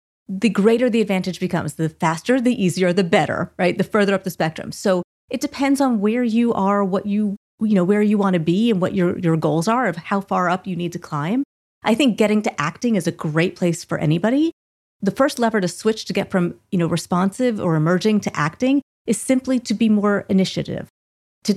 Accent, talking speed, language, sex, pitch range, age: American, 225 wpm, English, female, 170-220 Hz, 30-49